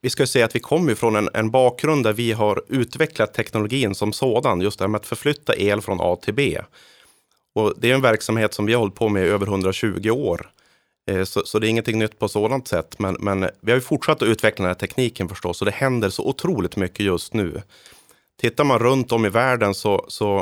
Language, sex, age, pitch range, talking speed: Swedish, male, 30-49, 95-115 Hz, 240 wpm